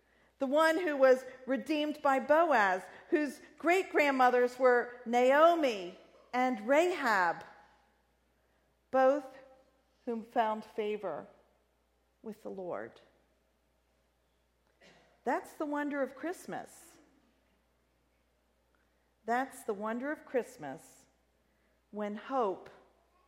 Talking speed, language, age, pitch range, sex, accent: 80 wpm, English, 50-69, 185-250 Hz, female, American